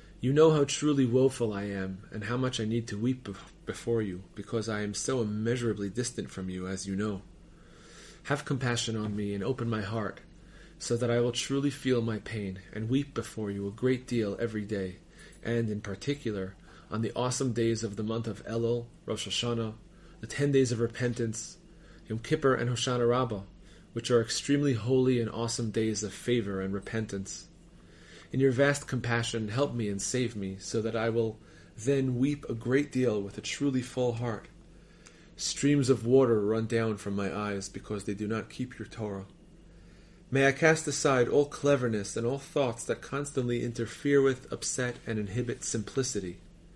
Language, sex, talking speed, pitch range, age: English, male, 180 wpm, 105-125 Hz, 30-49